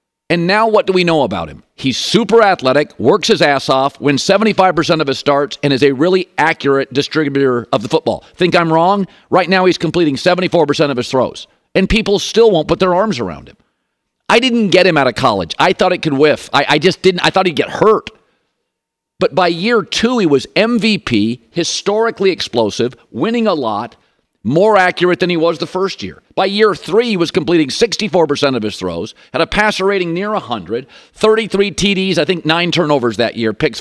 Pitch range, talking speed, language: 145-195 Hz, 205 wpm, English